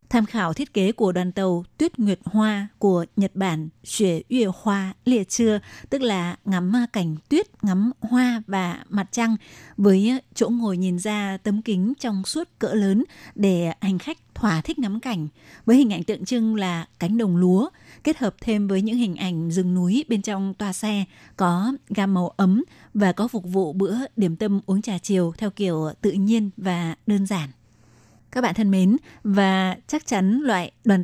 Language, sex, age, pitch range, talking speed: Vietnamese, female, 20-39, 190-225 Hz, 190 wpm